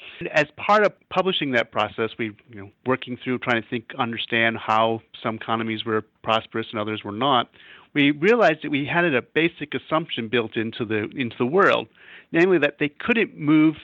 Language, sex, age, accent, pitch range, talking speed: English, male, 40-59, American, 120-160 Hz, 185 wpm